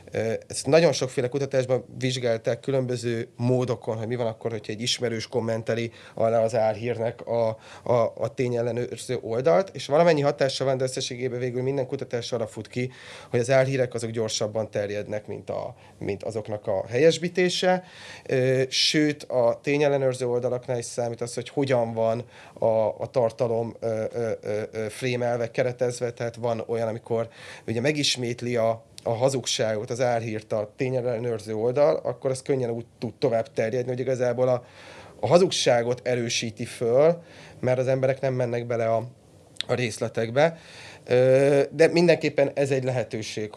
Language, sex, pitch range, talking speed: Hungarian, male, 115-130 Hz, 140 wpm